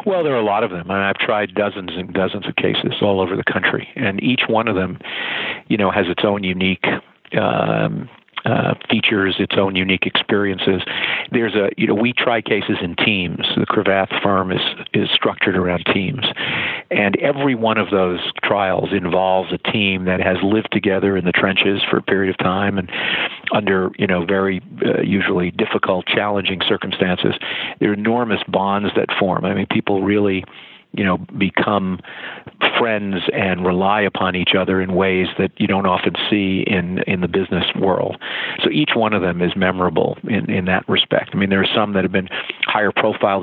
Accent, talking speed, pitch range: American, 190 wpm, 90-100 Hz